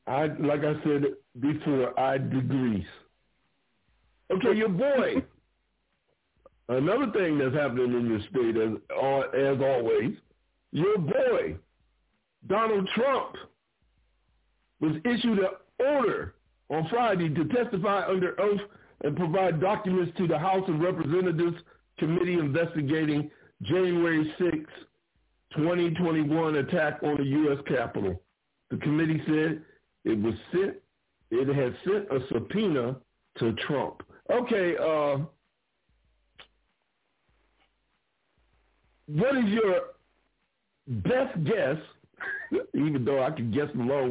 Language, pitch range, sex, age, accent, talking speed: English, 145-210 Hz, male, 60-79, American, 105 wpm